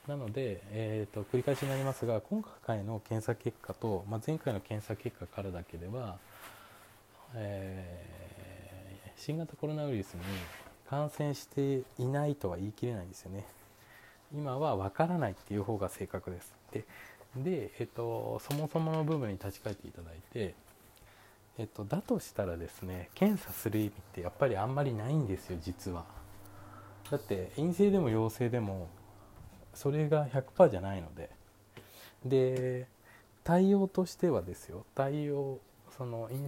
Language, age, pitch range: Japanese, 20-39, 100-135 Hz